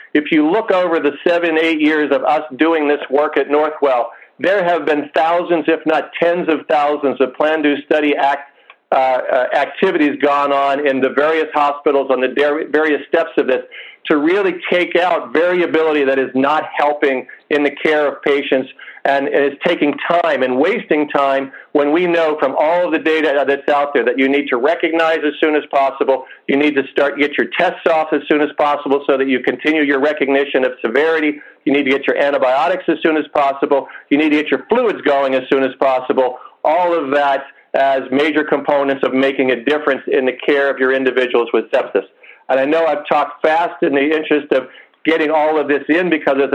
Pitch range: 135-155 Hz